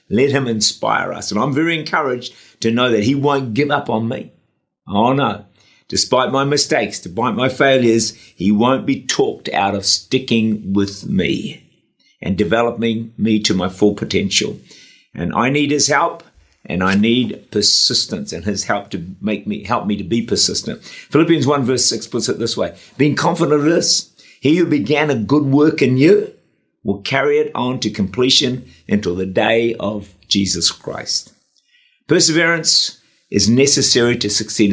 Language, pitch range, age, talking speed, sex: English, 110-150 Hz, 50-69, 170 wpm, male